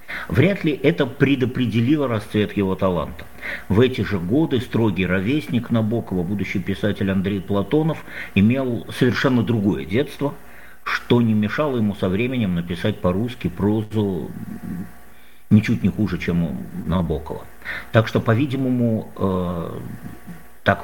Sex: male